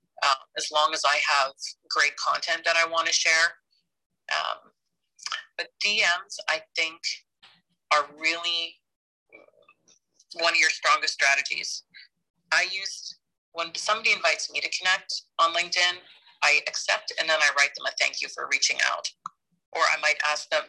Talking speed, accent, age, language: 150 wpm, American, 40-59, English